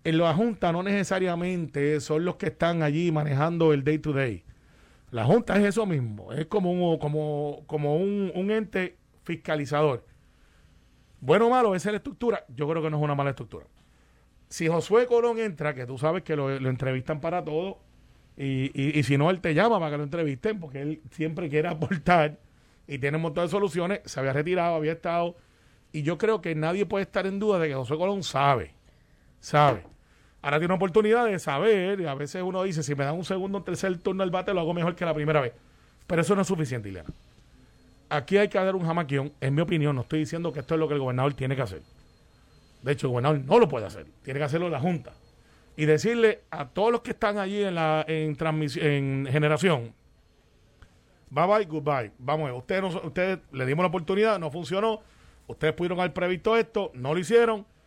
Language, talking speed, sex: Spanish, 210 wpm, male